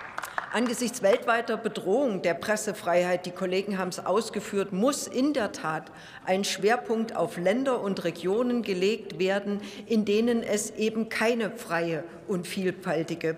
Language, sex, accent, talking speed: German, female, German, 135 wpm